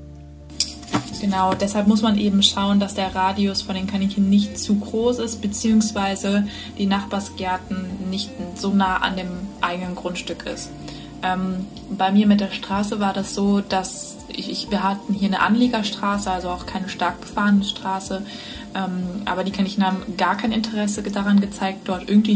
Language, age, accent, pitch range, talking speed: German, 20-39, German, 185-210 Hz, 165 wpm